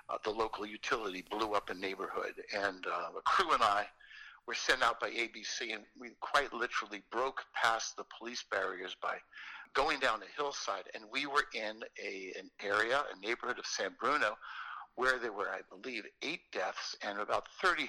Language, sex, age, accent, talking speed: English, male, 60-79, American, 185 wpm